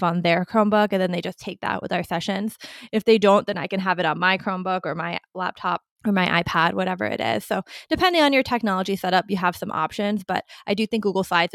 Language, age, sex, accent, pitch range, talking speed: English, 20-39, female, American, 190-245 Hz, 250 wpm